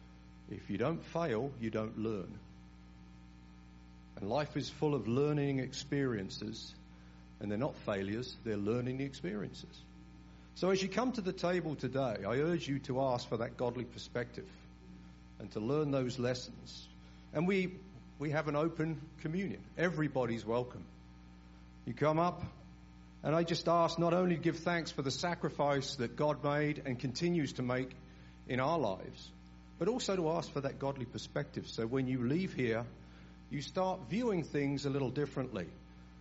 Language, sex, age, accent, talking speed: English, male, 50-69, British, 160 wpm